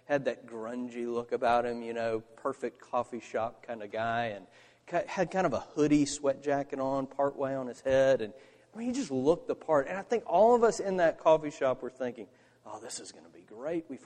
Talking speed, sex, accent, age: 235 wpm, male, American, 40-59